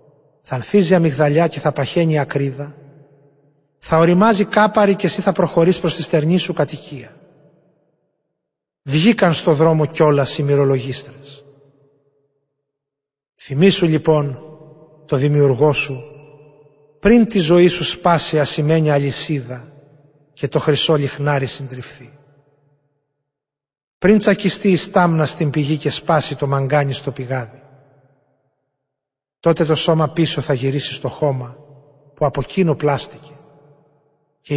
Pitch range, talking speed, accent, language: 140-165 Hz, 120 wpm, native, Greek